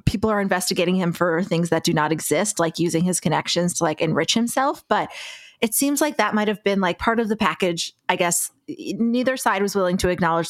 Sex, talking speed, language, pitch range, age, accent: female, 215 wpm, English, 170-230 Hz, 30-49, American